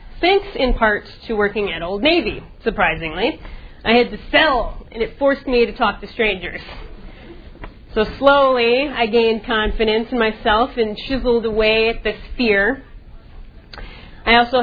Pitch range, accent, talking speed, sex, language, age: 215-260 Hz, American, 150 wpm, female, English, 30-49